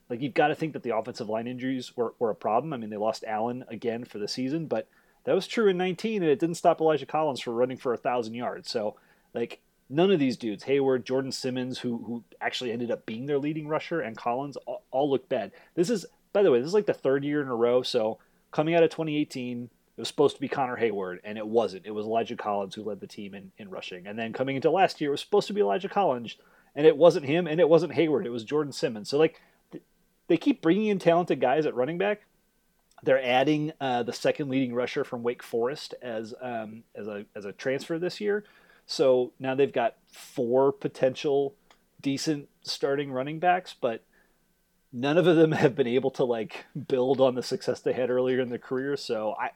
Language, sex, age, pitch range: English, male, 30-49, 125-160 Hz